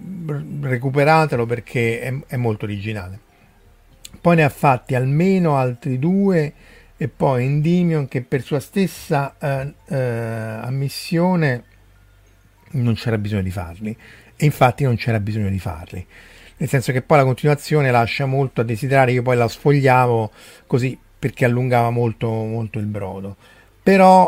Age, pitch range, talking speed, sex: 50-69, 110-145 Hz, 140 wpm, male